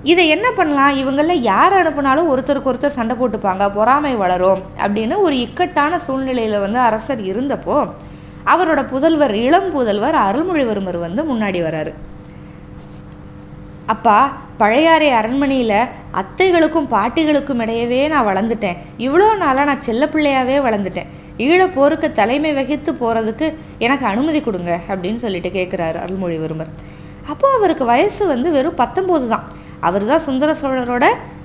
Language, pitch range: Tamil, 220-310 Hz